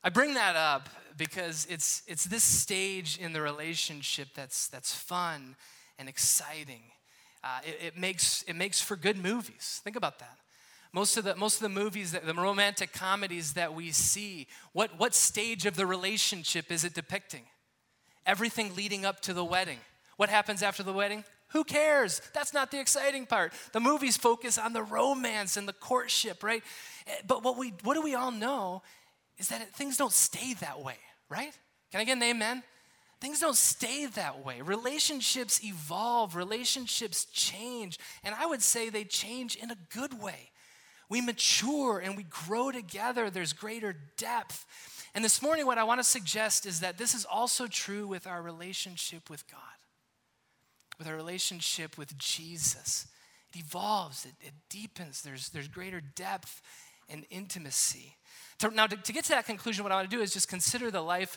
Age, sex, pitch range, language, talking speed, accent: 20-39, male, 170-230 Hz, English, 175 wpm, American